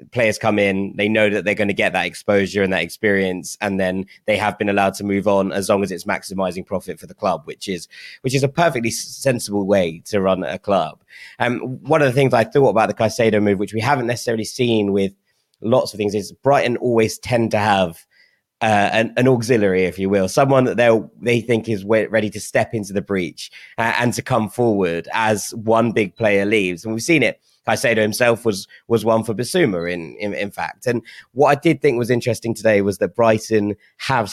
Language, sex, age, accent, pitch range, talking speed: English, male, 20-39, British, 100-115 Hz, 225 wpm